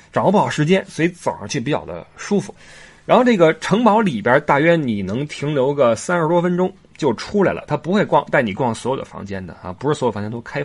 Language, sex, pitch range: Chinese, male, 130-195 Hz